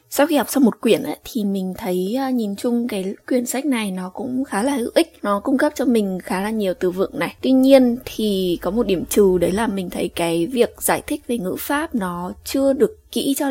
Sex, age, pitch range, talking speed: female, 20-39, 200-260 Hz, 245 wpm